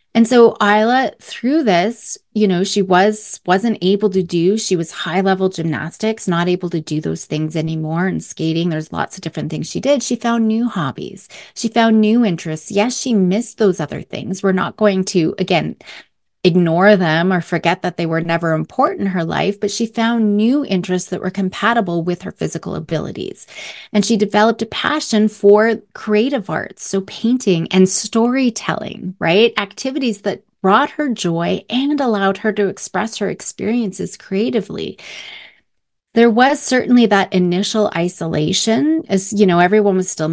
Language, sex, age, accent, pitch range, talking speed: English, female, 30-49, American, 180-225 Hz, 170 wpm